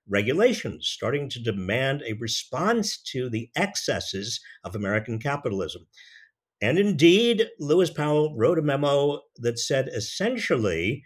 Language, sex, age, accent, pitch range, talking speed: English, male, 50-69, American, 115-165 Hz, 120 wpm